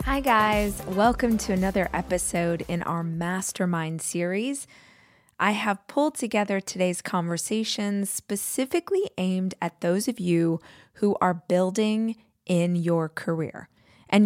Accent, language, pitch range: American, English, 180-225 Hz